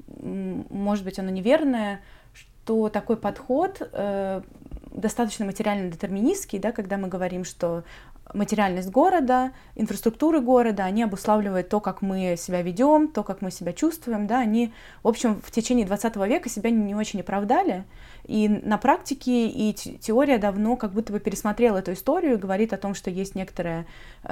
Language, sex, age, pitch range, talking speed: Russian, female, 20-39, 185-225 Hz, 150 wpm